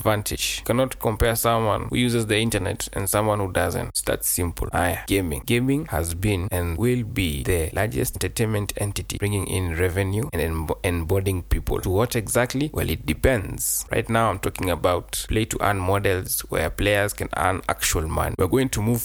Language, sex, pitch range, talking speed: English, male, 100-125 Hz, 185 wpm